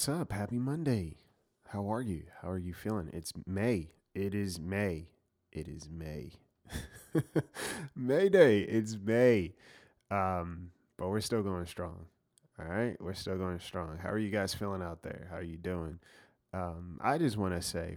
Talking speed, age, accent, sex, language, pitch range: 175 wpm, 30-49, American, male, English, 80-100 Hz